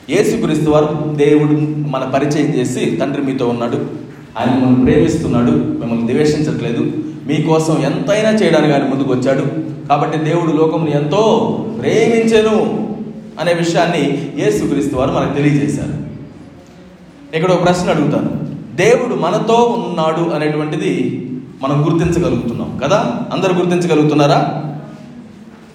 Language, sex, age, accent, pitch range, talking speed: Telugu, male, 20-39, native, 145-180 Hz, 100 wpm